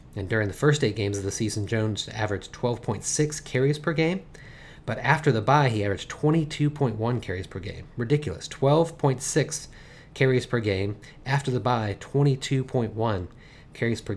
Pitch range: 100-130 Hz